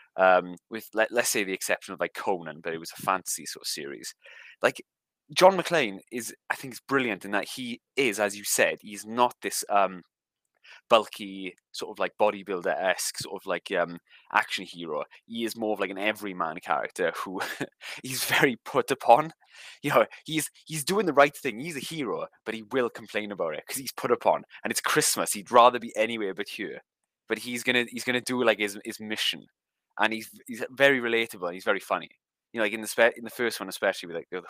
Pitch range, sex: 100-130 Hz, male